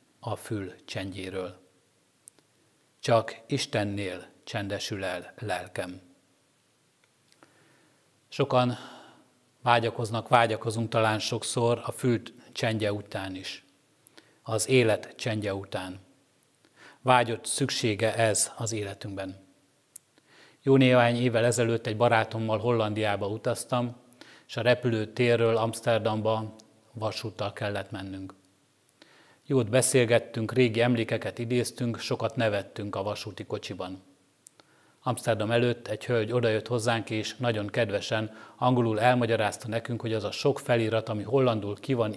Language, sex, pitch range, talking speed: Hungarian, male, 105-120 Hz, 105 wpm